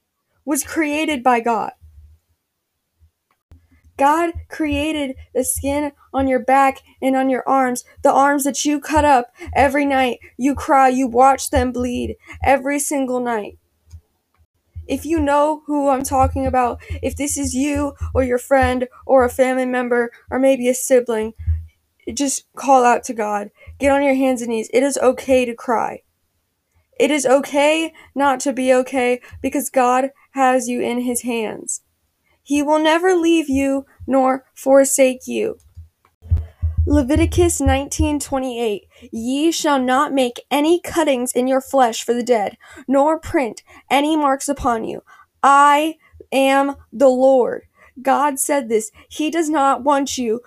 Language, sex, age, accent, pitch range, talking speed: English, female, 20-39, American, 240-285 Hz, 150 wpm